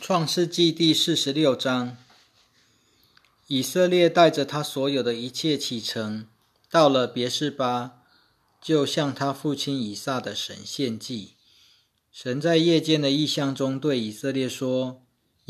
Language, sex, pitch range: Chinese, male, 110-140 Hz